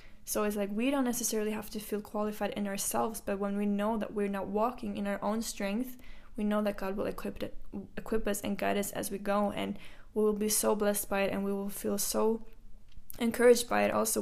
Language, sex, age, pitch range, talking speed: English, female, 10-29, 200-220 Hz, 230 wpm